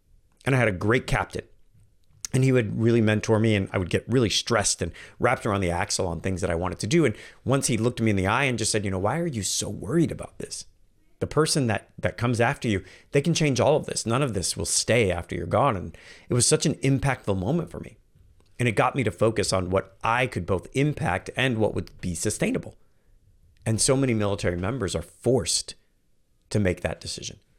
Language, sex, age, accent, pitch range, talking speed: English, male, 40-59, American, 95-130 Hz, 235 wpm